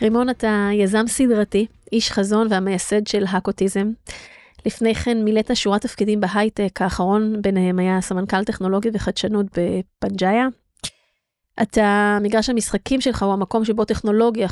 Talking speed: 125 wpm